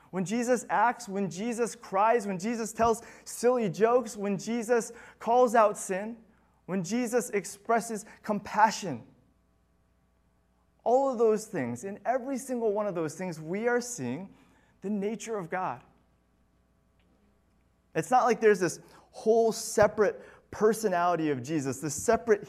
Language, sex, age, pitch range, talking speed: English, male, 30-49, 145-210 Hz, 135 wpm